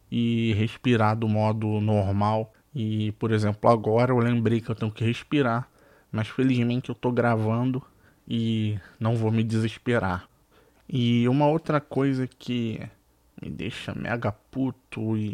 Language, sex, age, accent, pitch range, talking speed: Portuguese, male, 20-39, Brazilian, 110-125 Hz, 140 wpm